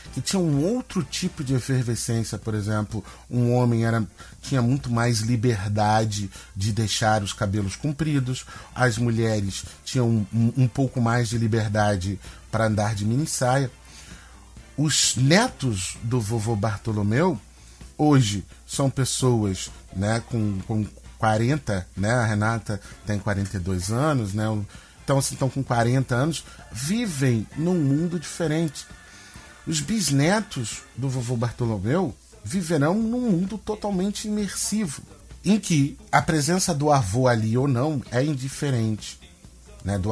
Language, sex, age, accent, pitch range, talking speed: Portuguese, male, 30-49, Brazilian, 105-155 Hz, 130 wpm